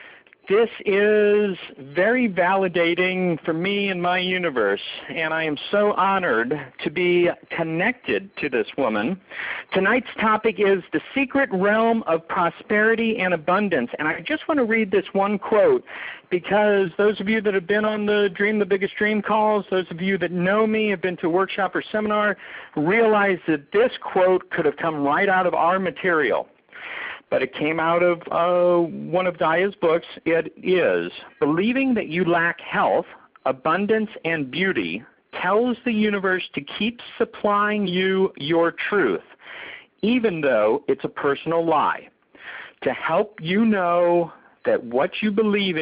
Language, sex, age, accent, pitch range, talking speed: English, male, 50-69, American, 170-210 Hz, 155 wpm